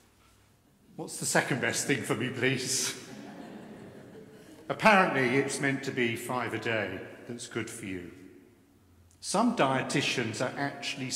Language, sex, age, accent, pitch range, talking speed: English, male, 50-69, British, 120-155 Hz, 130 wpm